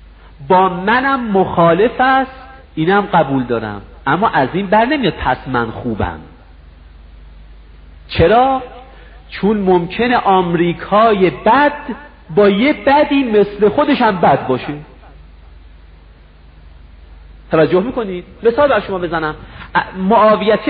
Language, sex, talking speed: Persian, male, 100 wpm